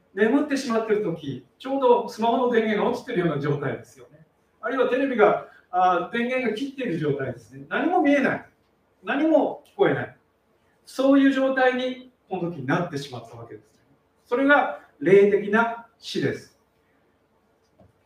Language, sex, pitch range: Japanese, male, 160-250 Hz